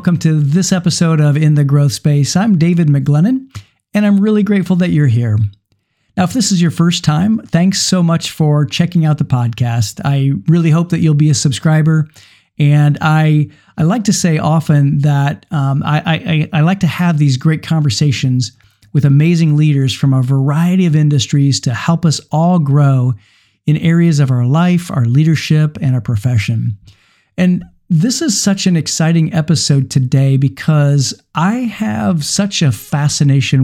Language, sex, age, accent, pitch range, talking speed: English, male, 50-69, American, 135-170 Hz, 175 wpm